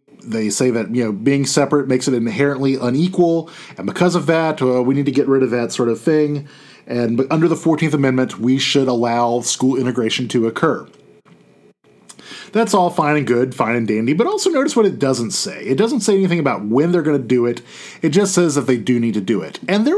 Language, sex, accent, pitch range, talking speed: English, male, American, 130-180 Hz, 230 wpm